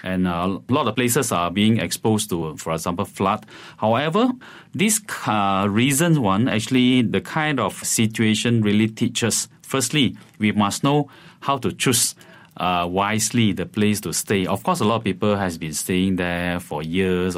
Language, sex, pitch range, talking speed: English, male, 90-115 Hz, 170 wpm